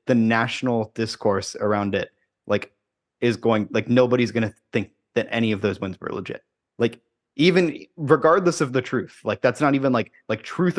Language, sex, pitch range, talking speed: English, male, 100-120 Hz, 185 wpm